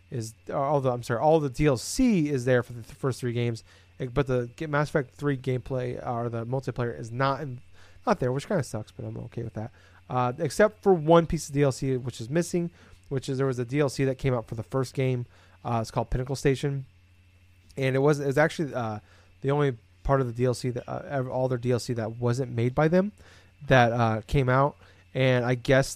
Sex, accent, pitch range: male, American, 115-145 Hz